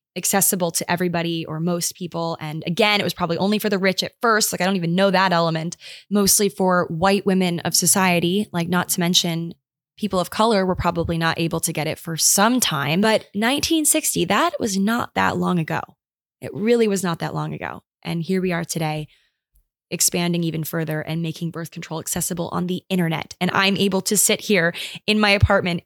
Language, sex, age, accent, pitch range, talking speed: English, female, 20-39, American, 165-200 Hz, 200 wpm